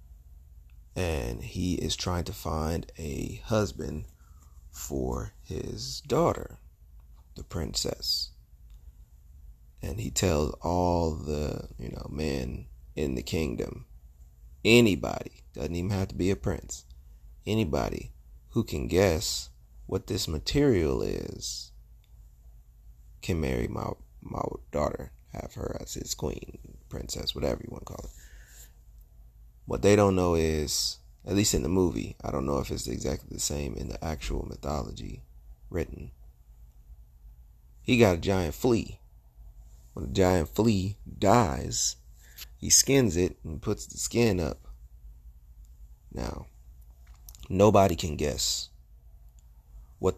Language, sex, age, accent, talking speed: English, male, 30-49, American, 125 wpm